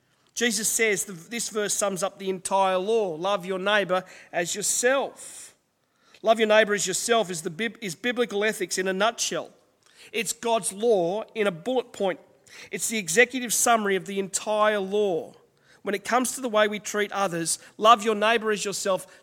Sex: male